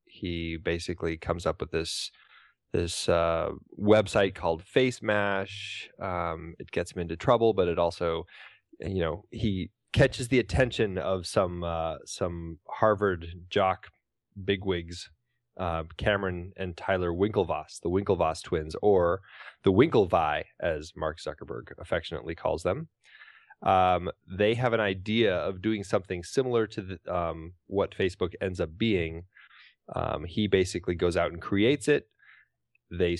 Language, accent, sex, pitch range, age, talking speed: English, American, male, 85-105 Hz, 20-39, 135 wpm